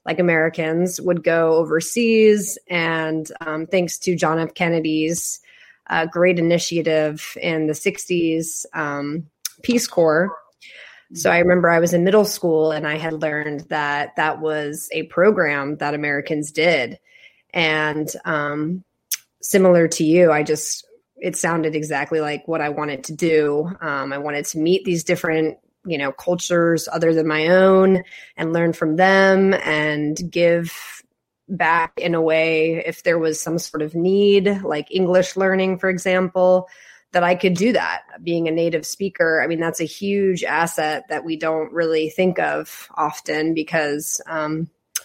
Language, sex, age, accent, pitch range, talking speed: English, female, 20-39, American, 155-180 Hz, 155 wpm